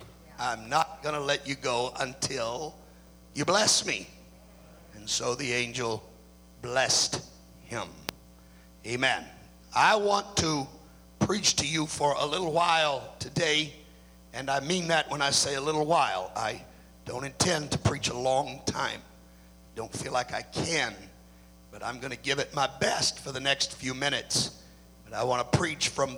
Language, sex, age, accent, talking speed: English, male, 60-79, American, 165 wpm